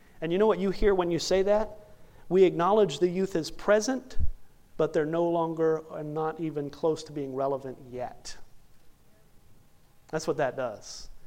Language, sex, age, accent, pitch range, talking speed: English, male, 40-59, American, 140-165 Hz, 170 wpm